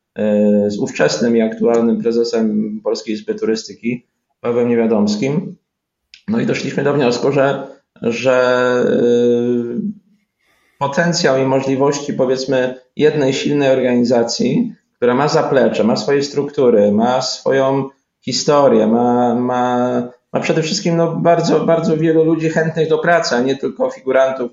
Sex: male